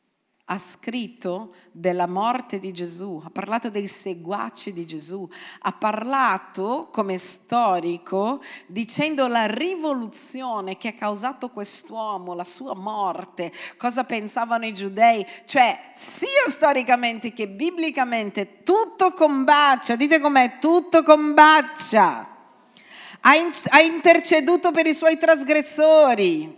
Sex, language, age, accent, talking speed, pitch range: female, Italian, 50-69, native, 105 wpm, 210-295 Hz